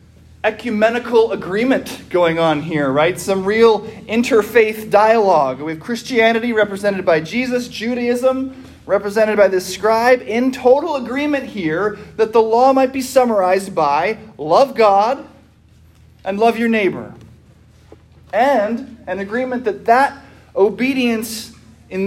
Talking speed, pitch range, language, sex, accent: 120 wpm, 185-235 Hz, English, male, American